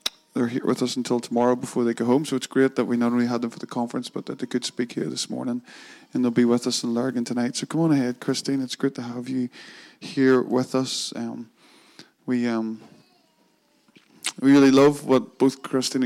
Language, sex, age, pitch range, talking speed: English, male, 20-39, 120-135 Hz, 225 wpm